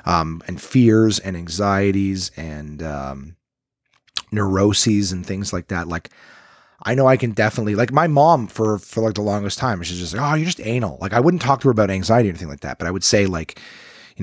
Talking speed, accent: 220 wpm, American